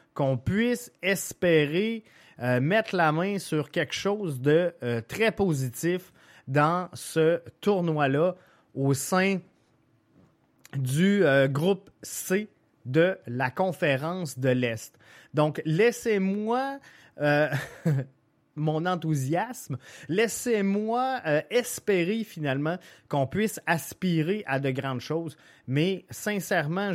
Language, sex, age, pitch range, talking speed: French, male, 30-49, 145-195 Hz, 100 wpm